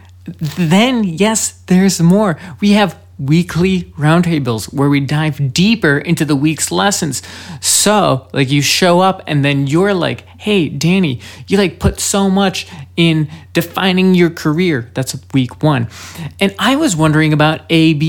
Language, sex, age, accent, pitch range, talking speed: English, male, 20-39, American, 140-200 Hz, 155 wpm